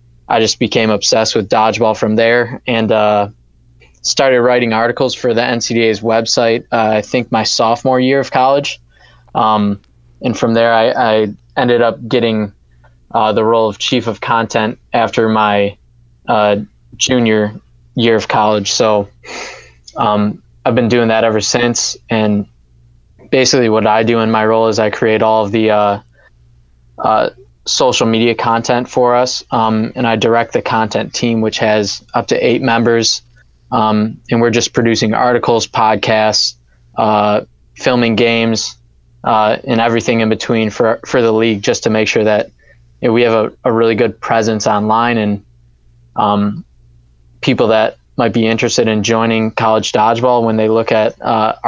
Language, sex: English, male